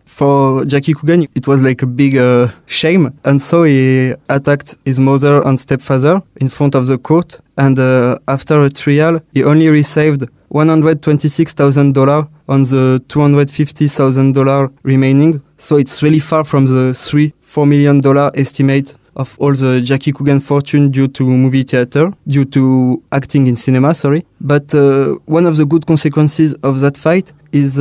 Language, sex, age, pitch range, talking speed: English, male, 20-39, 135-150 Hz, 155 wpm